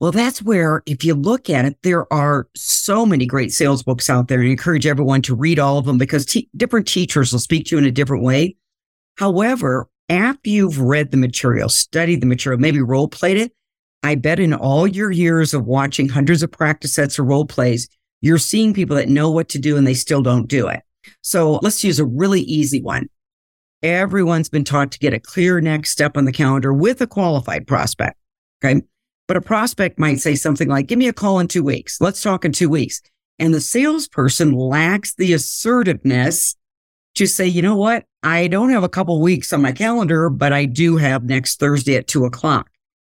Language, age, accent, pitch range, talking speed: English, 50-69, American, 135-180 Hz, 210 wpm